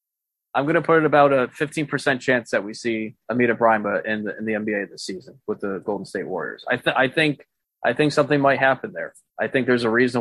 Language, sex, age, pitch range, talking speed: English, male, 20-39, 110-130 Hz, 240 wpm